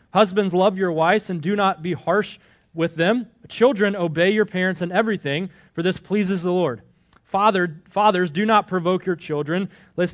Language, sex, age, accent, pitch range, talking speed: English, male, 30-49, American, 165-225 Hz, 170 wpm